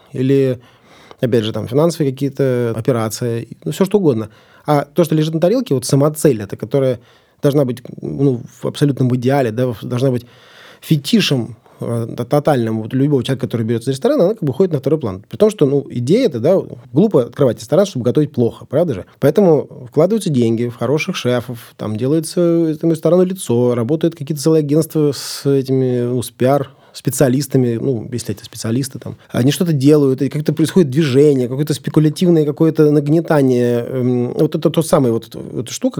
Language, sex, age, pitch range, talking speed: Russian, male, 20-39, 120-155 Hz, 175 wpm